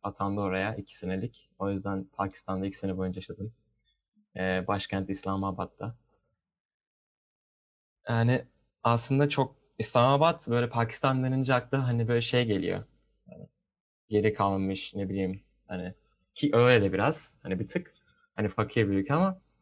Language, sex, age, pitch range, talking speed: Turkish, male, 30-49, 100-125 Hz, 130 wpm